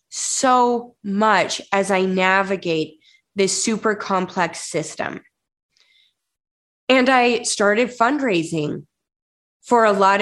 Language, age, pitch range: English, 20-39, 180-230 Hz